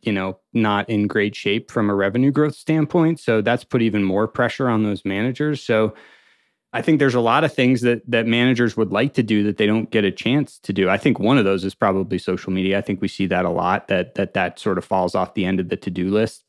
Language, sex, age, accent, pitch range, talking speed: English, male, 30-49, American, 95-120 Hz, 265 wpm